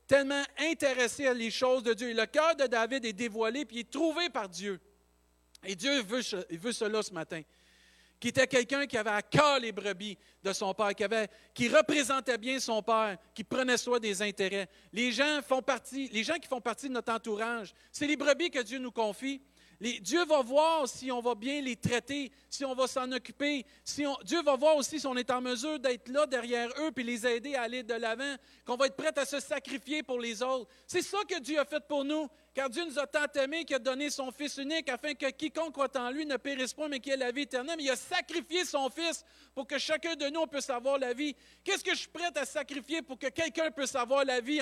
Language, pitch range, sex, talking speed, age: French, 245-295 Hz, male, 245 wpm, 50-69